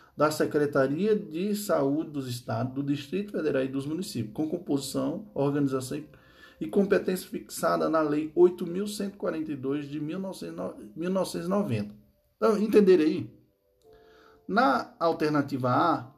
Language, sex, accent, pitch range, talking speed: Portuguese, male, Brazilian, 135-200 Hz, 110 wpm